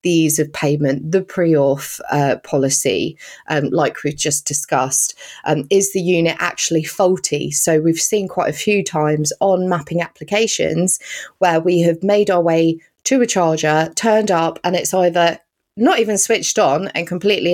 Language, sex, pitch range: English, female, 160-195 Hz